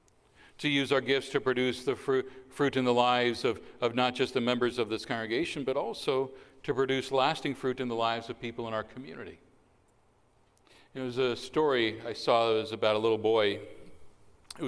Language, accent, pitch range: English, American, 105-130 Hz